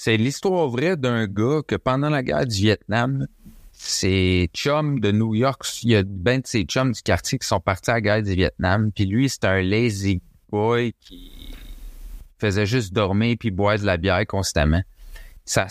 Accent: Canadian